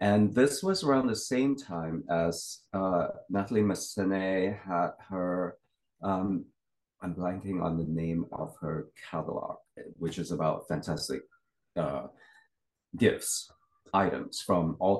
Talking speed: 125 wpm